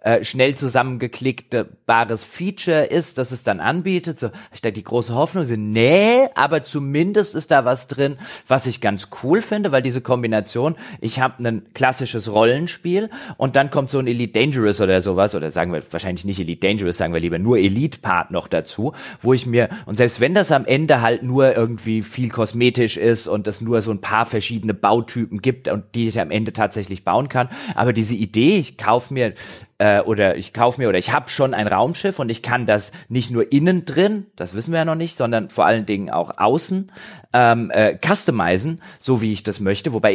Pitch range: 110-155 Hz